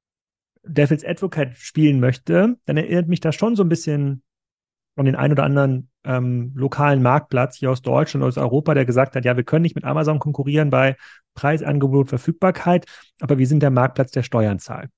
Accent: German